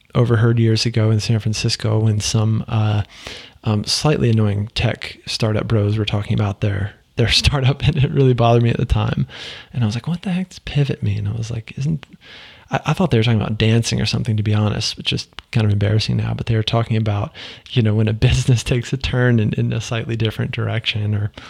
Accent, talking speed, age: American, 230 wpm, 20-39